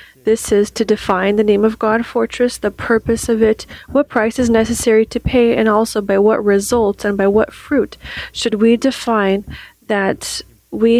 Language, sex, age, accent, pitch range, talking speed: English, female, 30-49, American, 195-225 Hz, 180 wpm